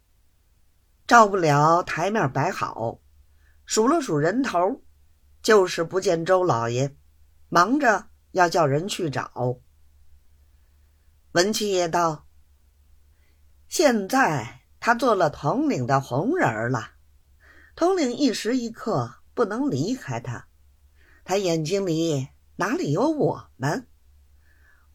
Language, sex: Chinese, female